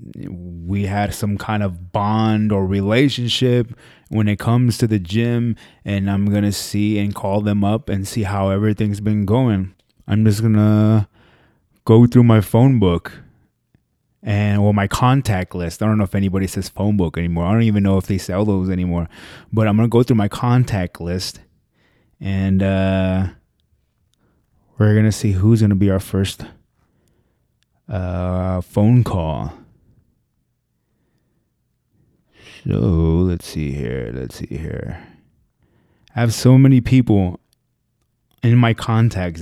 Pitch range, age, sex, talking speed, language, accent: 95-120 Hz, 20-39, male, 150 wpm, English, American